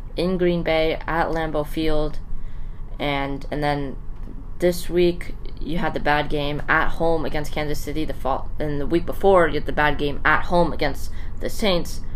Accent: American